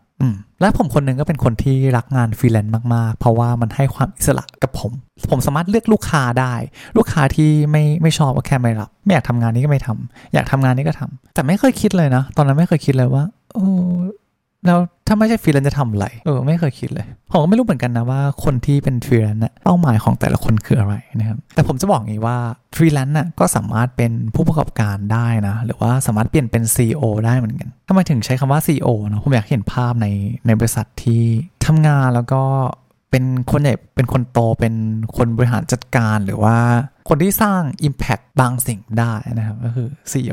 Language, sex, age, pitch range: Thai, male, 20-39, 115-150 Hz